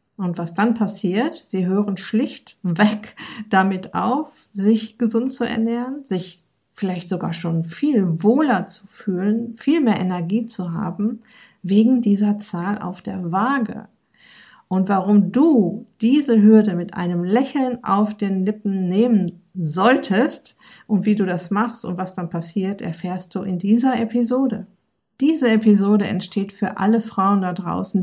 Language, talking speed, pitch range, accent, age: German, 145 wpm, 185-225 Hz, German, 50-69